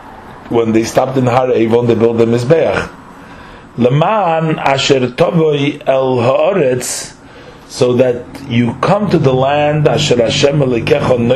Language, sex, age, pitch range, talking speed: English, male, 40-59, 115-145 Hz, 110 wpm